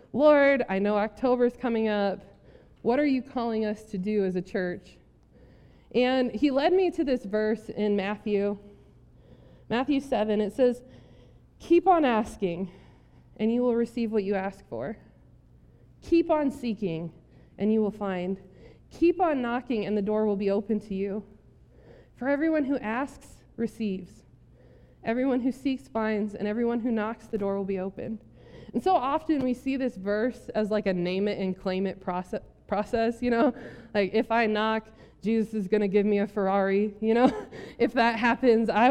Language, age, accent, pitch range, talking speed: English, 20-39, American, 205-265 Hz, 170 wpm